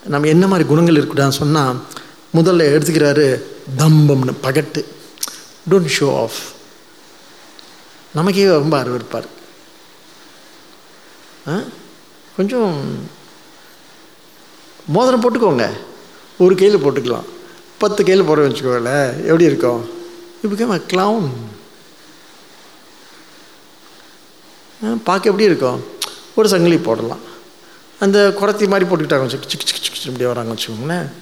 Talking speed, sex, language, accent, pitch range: 85 wpm, male, English, Indian, 145-195 Hz